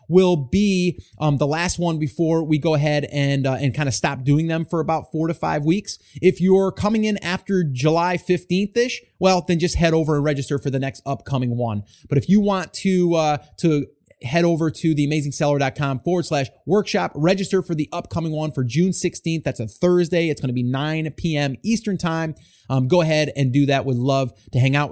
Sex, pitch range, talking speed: male, 135-180 Hz, 210 wpm